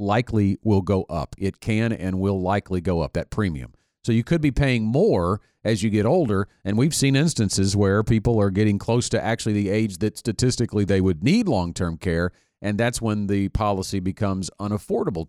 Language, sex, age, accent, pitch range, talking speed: English, male, 40-59, American, 100-130 Hz, 195 wpm